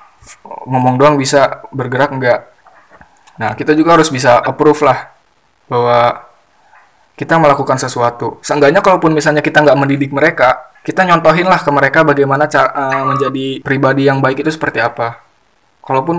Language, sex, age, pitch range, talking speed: Indonesian, male, 20-39, 130-150 Hz, 140 wpm